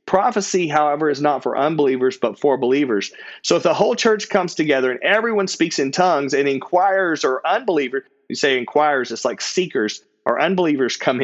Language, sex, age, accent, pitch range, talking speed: English, male, 40-59, American, 135-170 Hz, 180 wpm